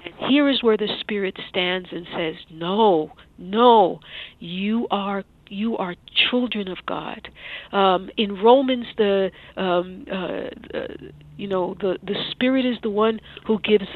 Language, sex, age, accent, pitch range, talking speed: English, female, 50-69, American, 185-230 Hz, 150 wpm